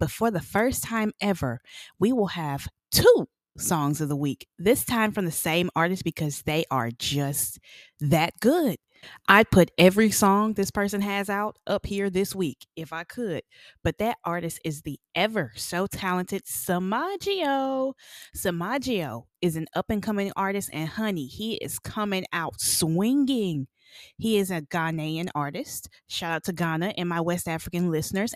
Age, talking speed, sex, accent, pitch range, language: 20-39, 165 wpm, female, American, 160-210 Hz, English